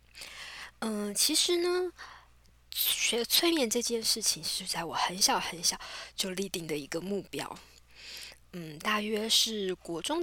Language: Chinese